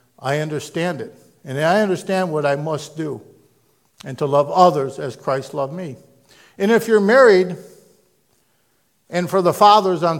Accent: American